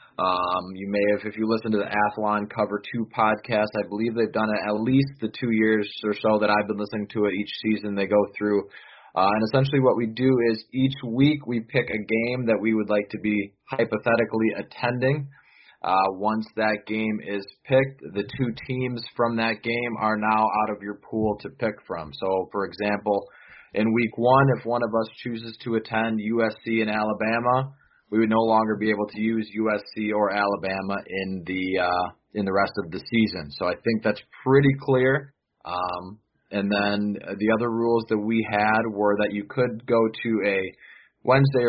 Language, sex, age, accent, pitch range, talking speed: English, male, 20-39, American, 105-115 Hz, 195 wpm